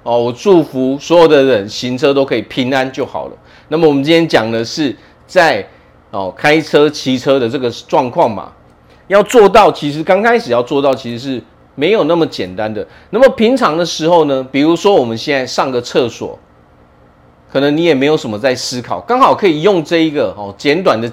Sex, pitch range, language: male, 110-160 Hz, Chinese